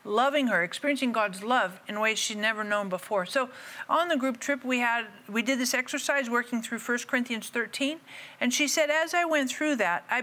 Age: 50-69